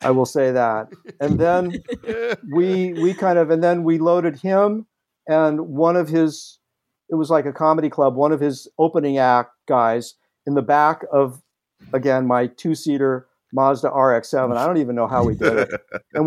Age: 50-69